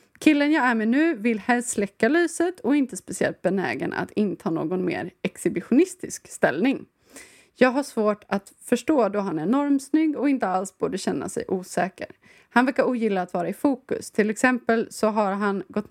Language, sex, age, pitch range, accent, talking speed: Swedish, female, 20-39, 195-255 Hz, native, 180 wpm